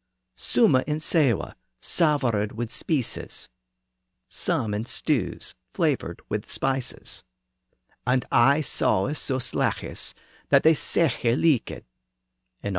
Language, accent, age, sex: English, American, 50-69, male